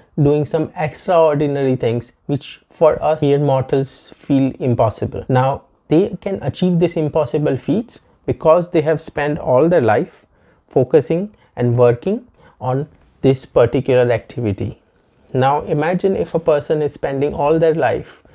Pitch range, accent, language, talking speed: 130-160 Hz, Indian, English, 135 wpm